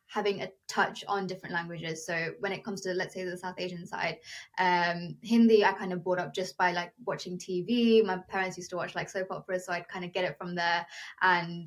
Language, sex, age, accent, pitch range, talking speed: English, female, 20-39, British, 180-210 Hz, 235 wpm